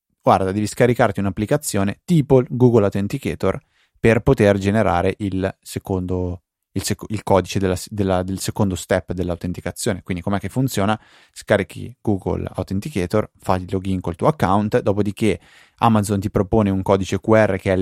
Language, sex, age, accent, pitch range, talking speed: Italian, male, 20-39, native, 95-110 Hz, 135 wpm